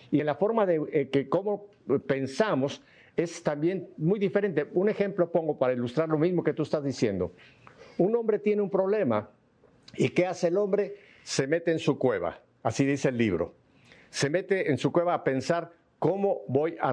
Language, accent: Spanish, Mexican